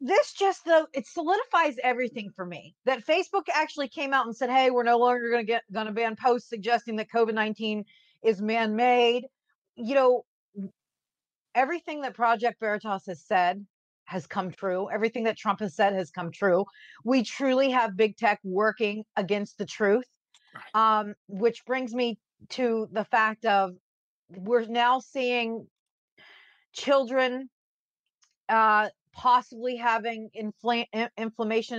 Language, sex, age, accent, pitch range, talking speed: English, female, 40-59, American, 215-255 Hz, 140 wpm